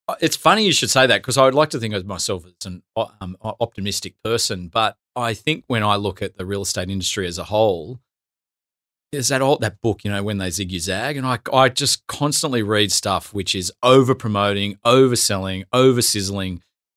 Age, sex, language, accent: 30-49, male, English, Australian